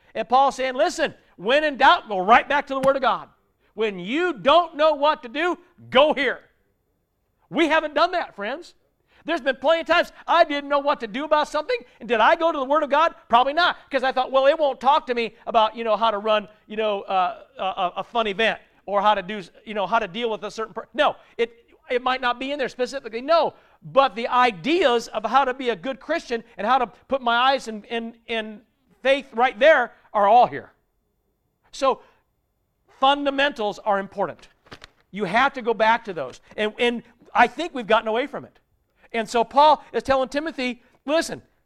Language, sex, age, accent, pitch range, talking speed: English, male, 50-69, American, 235-295 Hz, 215 wpm